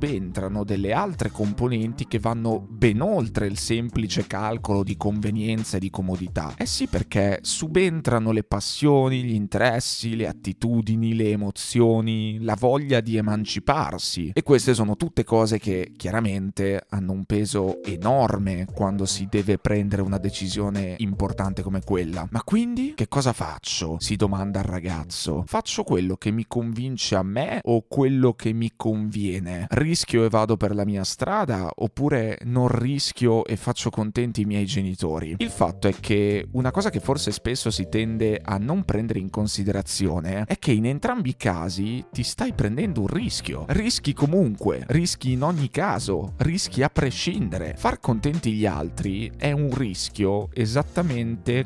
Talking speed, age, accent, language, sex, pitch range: 155 wpm, 30-49, native, Italian, male, 100-125 Hz